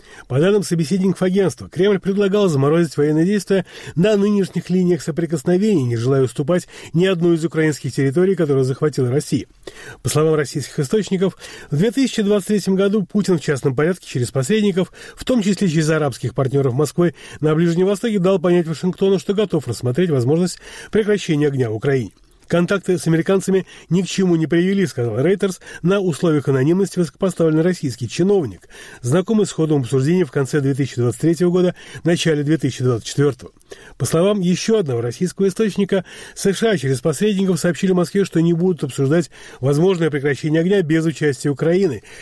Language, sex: Arabic, male